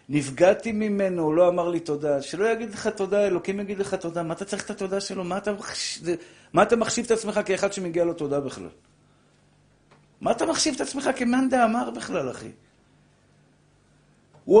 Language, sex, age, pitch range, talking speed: Hebrew, male, 50-69, 185-255 Hz, 175 wpm